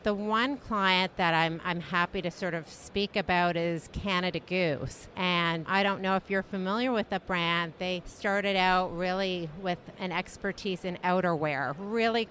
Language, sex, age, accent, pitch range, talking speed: English, female, 50-69, American, 180-200 Hz, 170 wpm